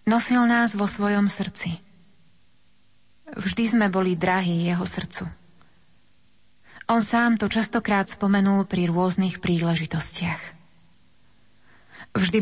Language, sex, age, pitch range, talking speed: Slovak, female, 30-49, 170-205 Hz, 95 wpm